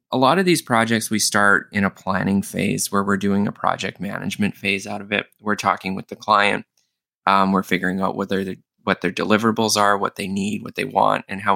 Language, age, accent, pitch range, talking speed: English, 20-39, American, 100-115 Hz, 225 wpm